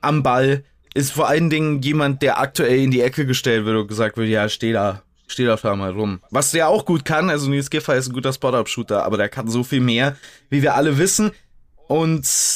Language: German